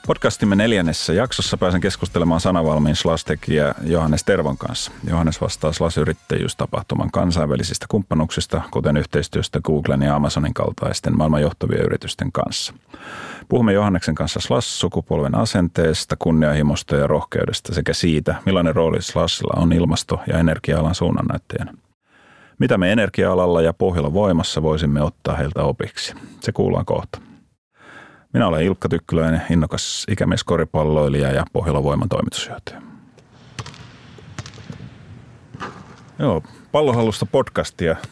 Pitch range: 75-90 Hz